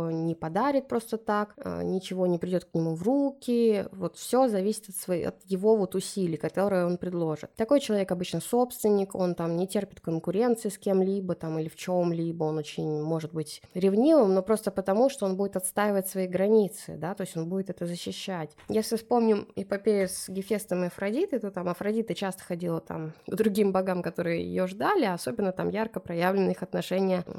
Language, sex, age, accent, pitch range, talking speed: Russian, female, 20-39, native, 175-215 Hz, 185 wpm